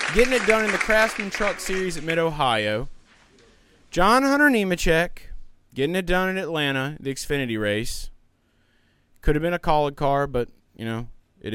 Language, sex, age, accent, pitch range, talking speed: English, male, 20-39, American, 115-180 Hz, 160 wpm